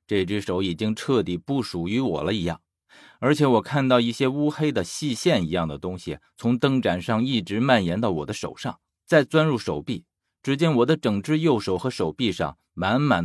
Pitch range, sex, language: 95-140 Hz, male, Chinese